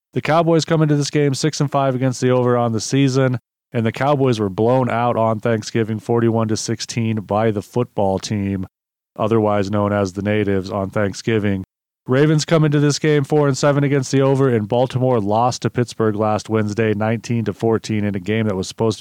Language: English